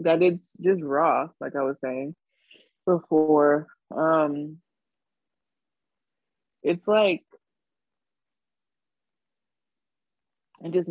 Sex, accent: female, American